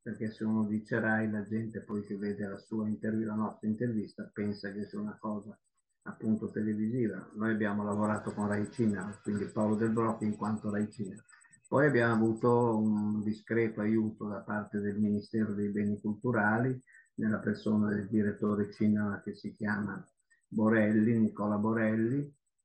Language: Italian